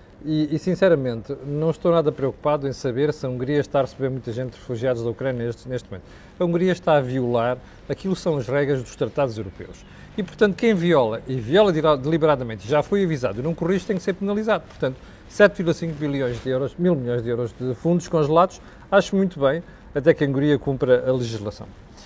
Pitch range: 130-170 Hz